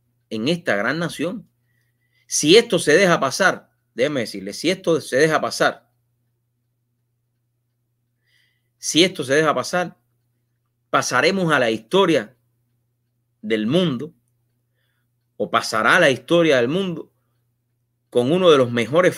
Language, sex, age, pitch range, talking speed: English, male, 30-49, 120-165 Hz, 120 wpm